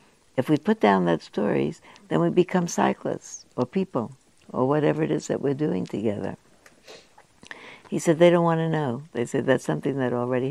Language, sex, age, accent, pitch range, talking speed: English, female, 60-79, American, 115-155 Hz, 190 wpm